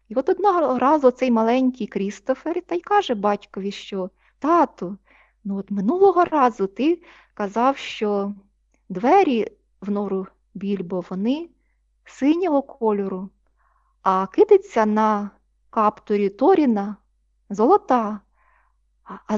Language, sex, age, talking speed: Ukrainian, female, 20-39, 105 wpm